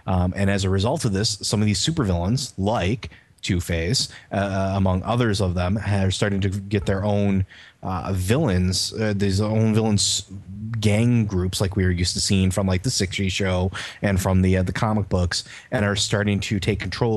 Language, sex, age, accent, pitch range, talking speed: English, male, 30-49, American, 95-110 Hz, 190 wpm